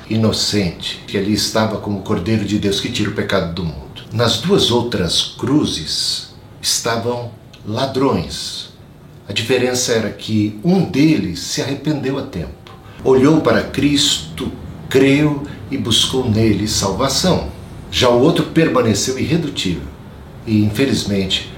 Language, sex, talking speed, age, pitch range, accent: Portuguese, male, 130 wpm, 60-79, 100-130 Hz, Brazilian